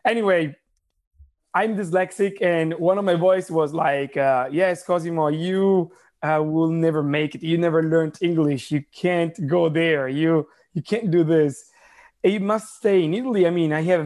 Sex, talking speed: male, 185 wpm